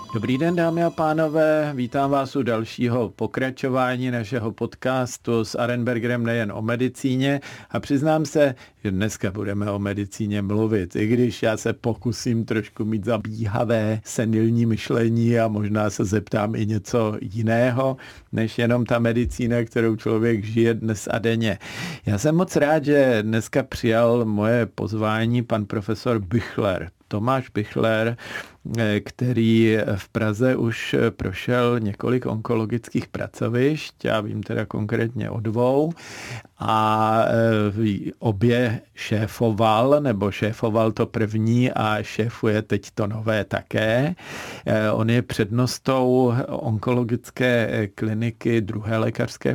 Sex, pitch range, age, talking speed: male, 110-125 Hz, 50-69, 120 wpm